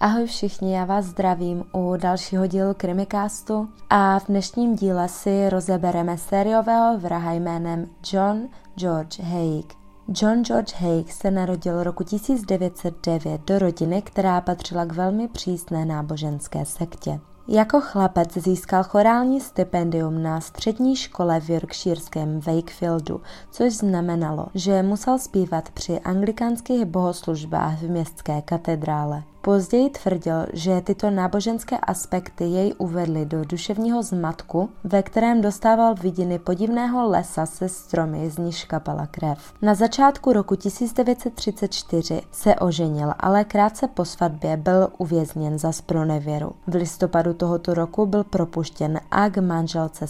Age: 20-39